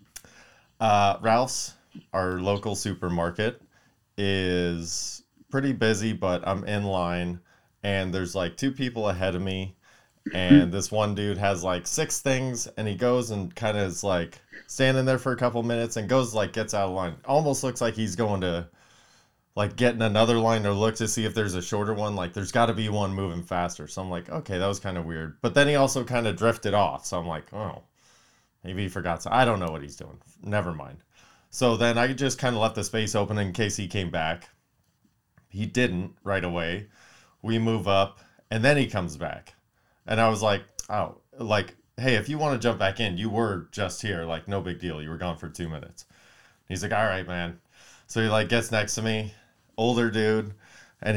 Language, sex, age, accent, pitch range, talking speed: English, male, 30-49, American, 95-115 Hz, 210 wpm